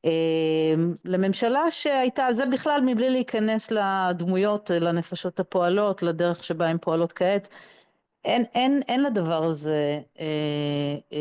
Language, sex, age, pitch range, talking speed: Hebrew, female, 40-59, 165-215 Hz, 105 wpm